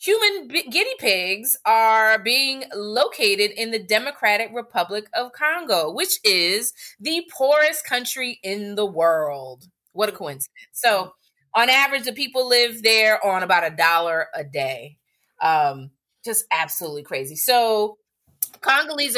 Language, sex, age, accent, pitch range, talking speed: English, female, 30-49, American, 185-260 Hz, 130 wpm